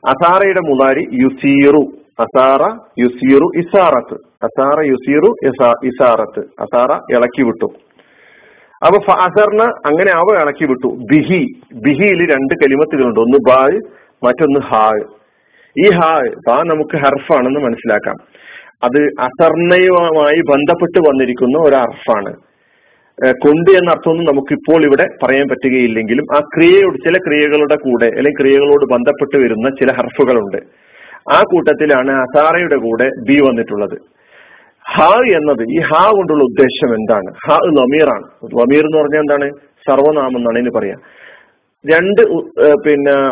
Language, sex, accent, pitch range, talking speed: Malayalam, male, native, 130-165 Hz, 105 wpm